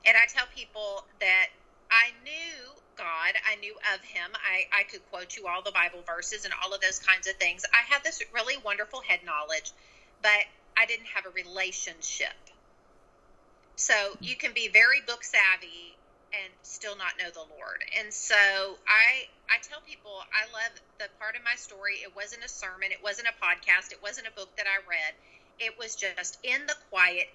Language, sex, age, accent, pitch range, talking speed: English, female, 40-59, American, 185-230 Hz, 195 wpm